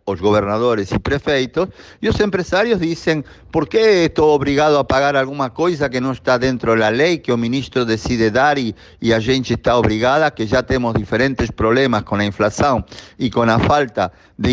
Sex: male